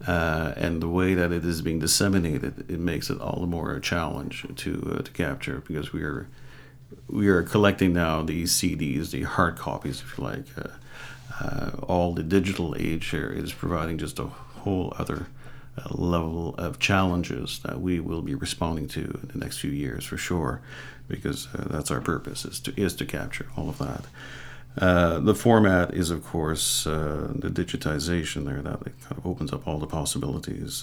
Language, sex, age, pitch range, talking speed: English, male, 50-69, 85-130 Hz, 190 wpm